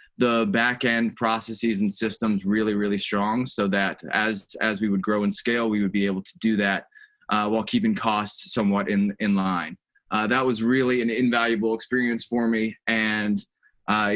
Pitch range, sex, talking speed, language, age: 105-125 Hz, male, 180 wpm, English, 20-39